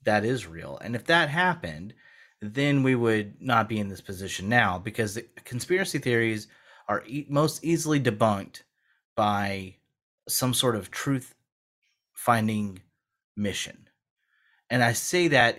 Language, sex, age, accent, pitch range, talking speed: English, male, 30-49, American, 105-140 Hz, 140 wpm